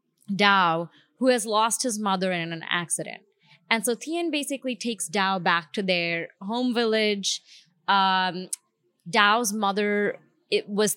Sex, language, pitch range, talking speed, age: female, English, 190-270 Hz, 135 wpm, 20-39